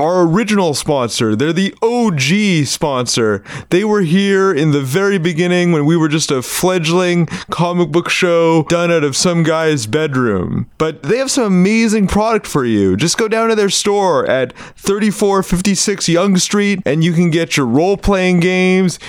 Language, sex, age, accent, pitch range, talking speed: English, male, 30-49, American, 155-195 Hz, 170 wpm